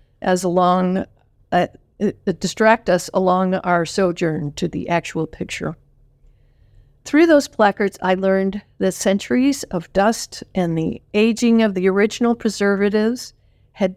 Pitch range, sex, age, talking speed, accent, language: 175-210 Hz, female, 50-69, 120 wpm, American, English